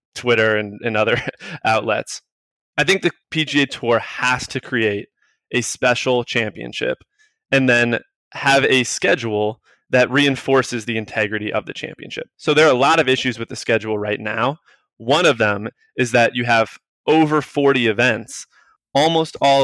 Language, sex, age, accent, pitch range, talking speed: English, male, 20-39, American, 115-140 Hz, 160 wpm